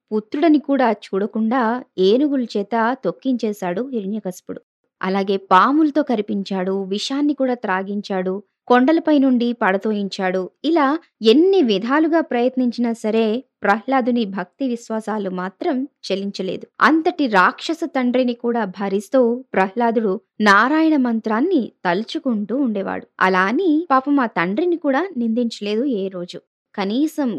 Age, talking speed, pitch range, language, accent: 20-39, 95 wpm, 200-270 Hz, Telugu, native